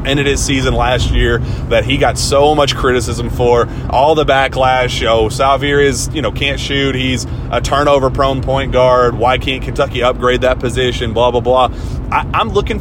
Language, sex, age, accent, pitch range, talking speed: English, male, 30-49, American, 115-135 Hz, 185 wpm